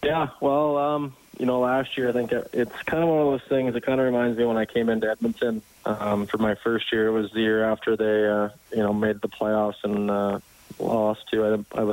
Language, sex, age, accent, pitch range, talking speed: English, male, 20-39, American, 105-115 Hz, 245 wpm